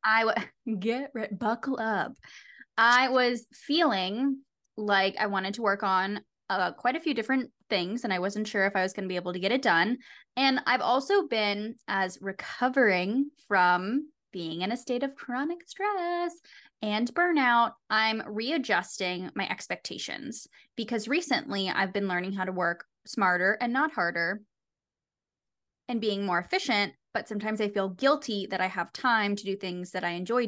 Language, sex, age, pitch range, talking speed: English, female, 10-29, 190-260 Hz, 175 wpm